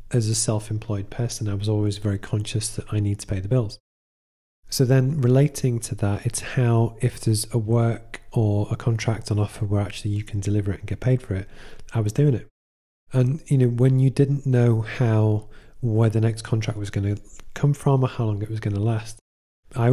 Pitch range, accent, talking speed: 105-125 Hz, British, 215 wpm